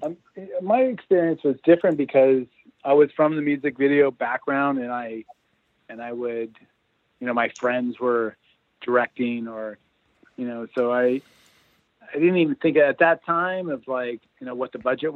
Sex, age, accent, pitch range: male, 40-59, American, 120-145 Hz